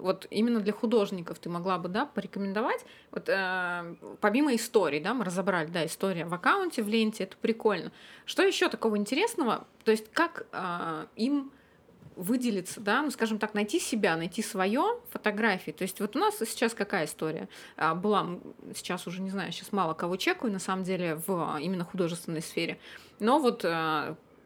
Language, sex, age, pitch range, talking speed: Russian, female, 20-39, 185-240 Hz, 170 wpm